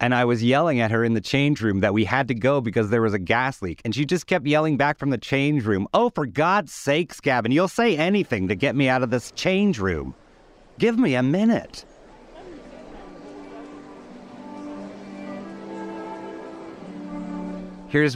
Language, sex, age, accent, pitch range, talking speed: English, male, 30-49, American, 85-120 Hz, 170 wpm